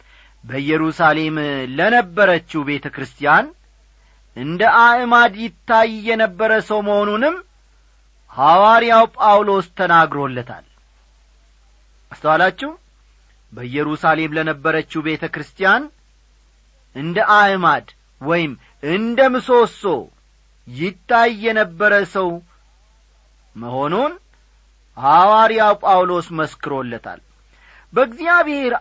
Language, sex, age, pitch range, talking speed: Amharic, male, 40-59, 135-225 Hz, 50 wpm